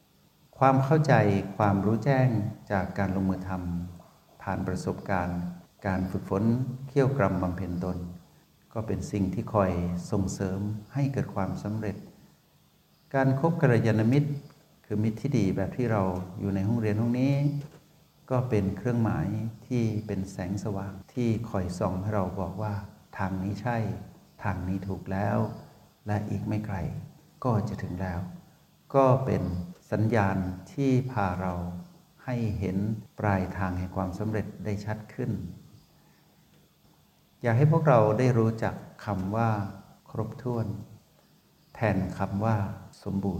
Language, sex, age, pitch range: Thai, male, 60-79, 95-125 Hz